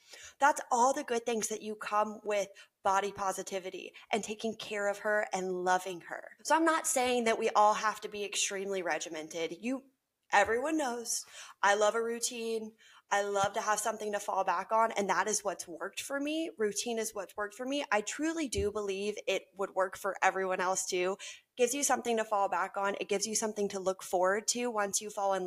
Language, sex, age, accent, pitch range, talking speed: English, female, 20-39, American, 185-255 Hz, 210 wpm